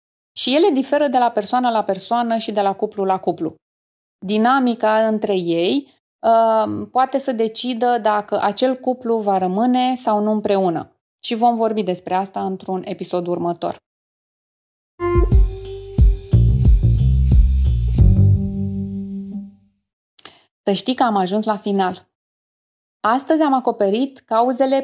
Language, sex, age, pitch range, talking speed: Romanian, female, 20-39, 185-250 Hz, 115 wpm